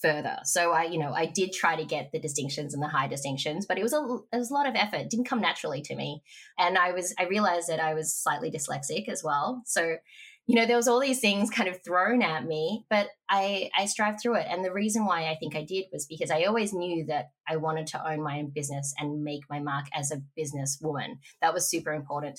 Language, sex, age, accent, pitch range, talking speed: English, female, 20-39, Australian, 140-170 Hz, 255 wpm